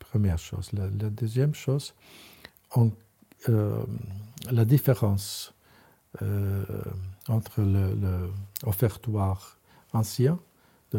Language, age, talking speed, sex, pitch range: French, 60-79, 95 wpm, male, 100-125 Hz